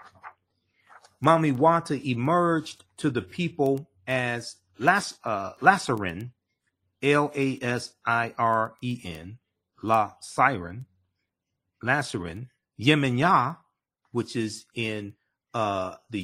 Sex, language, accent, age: male, English, American, 40-59